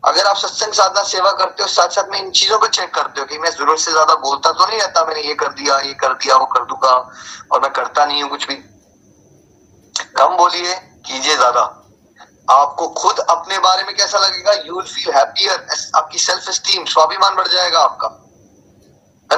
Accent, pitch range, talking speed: native, 155-200 Hz, 200 wpm